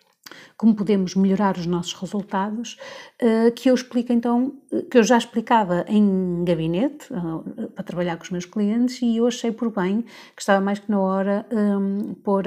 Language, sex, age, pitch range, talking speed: Portuguese, female, 50-69, 190-230 Hz, 170 wpm